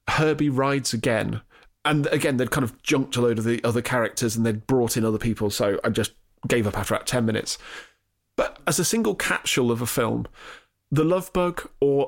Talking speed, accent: 210 wpm, British